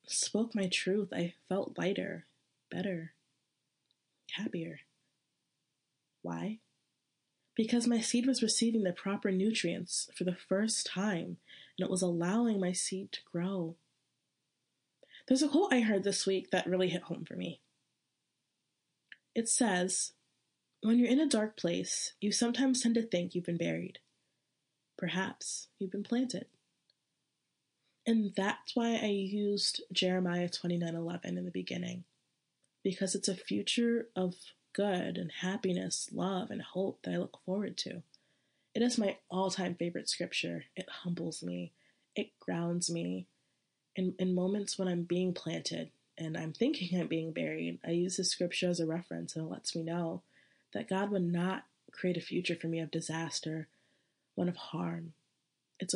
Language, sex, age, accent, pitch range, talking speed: English, female, 20-39, American, 165-200 Hz, 155 wpm